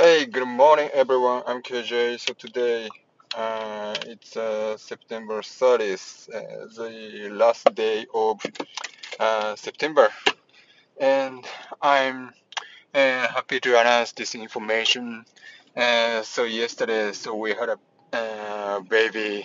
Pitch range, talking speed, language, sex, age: 100-120 Hz, 115 wpm, English, male, 20-39